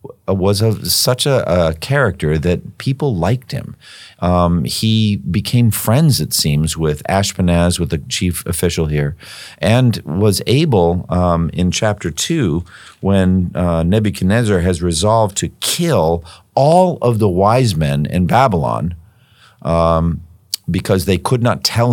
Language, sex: English, male